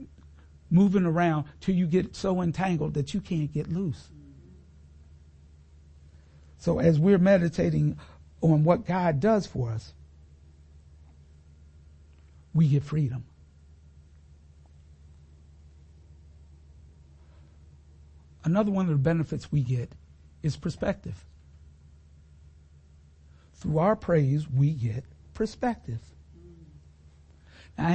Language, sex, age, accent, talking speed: English, male, 60-79, American, 90 wpm